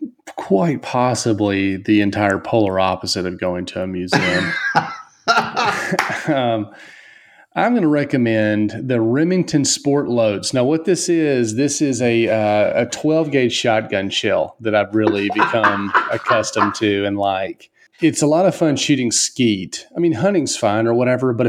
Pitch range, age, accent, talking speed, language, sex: 105-140 Hz, 30-49, American, 155 wpm, English, male